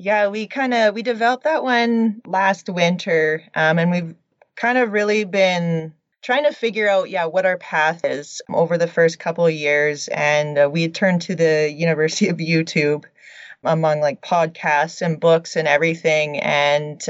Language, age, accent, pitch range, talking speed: English, 20-39, American, 150-180 Hz, 170 wpm